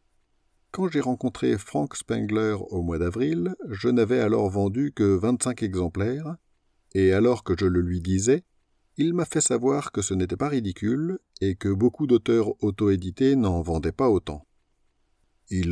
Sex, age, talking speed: male, 50-69, 155 wpm